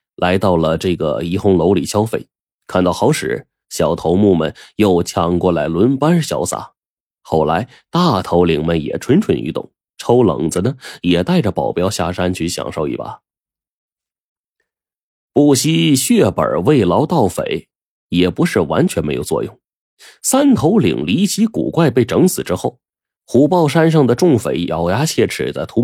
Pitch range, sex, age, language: 85-130 Hz, male, 30-49, Chinese